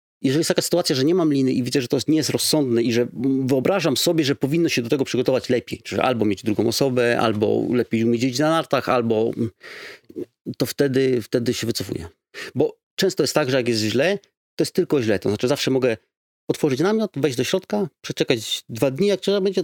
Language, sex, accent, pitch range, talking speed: Polish, male, native, 115-170 Hz, 215 wpm